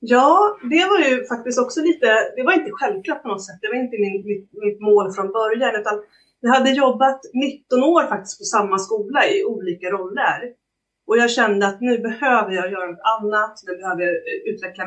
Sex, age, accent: female, 30-49, native